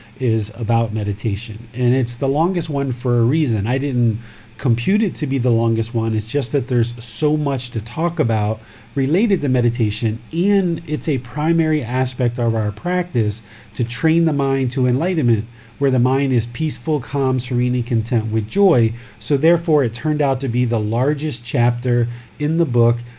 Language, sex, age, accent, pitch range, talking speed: English, male, 40-59, American, 115-150 Hz, 180 wpm